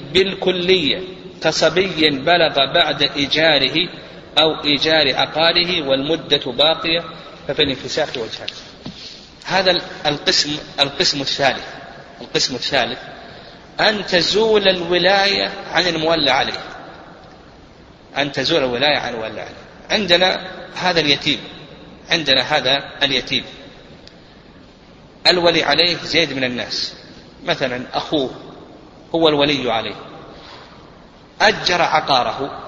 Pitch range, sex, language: 150-185 Hz, male, Arabic